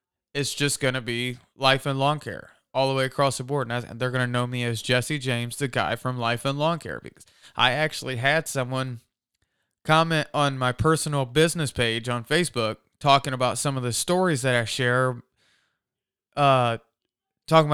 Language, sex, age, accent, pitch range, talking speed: English, male, 20-39, American, 125-150 Hz, 180 wpm